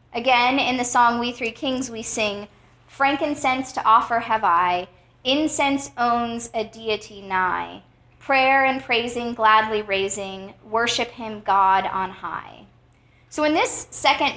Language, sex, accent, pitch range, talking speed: English, female, American, 200-255 Hz, 140 wpm